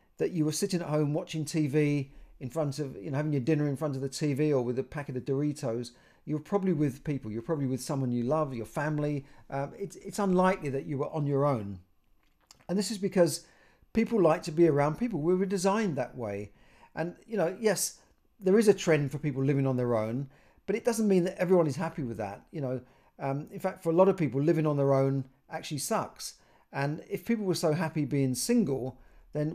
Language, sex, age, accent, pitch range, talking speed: English, male, 40-59, British, 130-170 Hz, 235 wpm